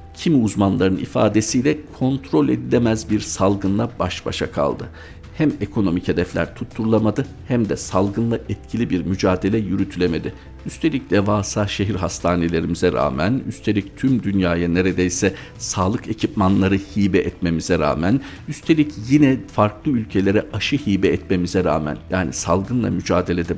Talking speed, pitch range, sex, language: 115 wpm, 95-110 Hz, male, Turkish